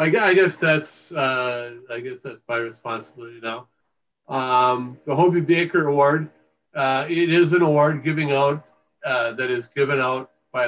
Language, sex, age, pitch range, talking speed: English, male, 40-59, 130-160 Hz, 155 wpm